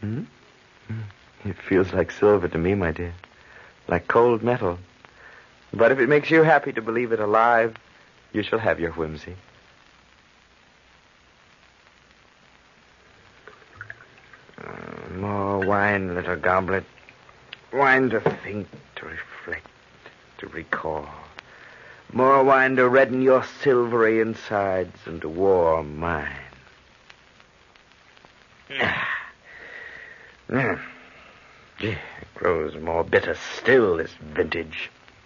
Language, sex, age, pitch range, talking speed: English, male, 60-79, 85-130 Hz, 105 wpm